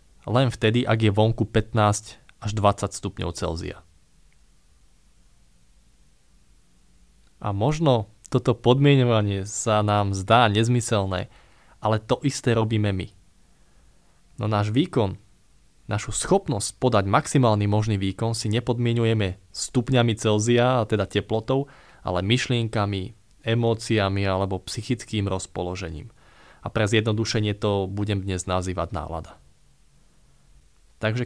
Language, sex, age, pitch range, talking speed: Slovak, male, 20-39, 95-120 Hz, 105 wpm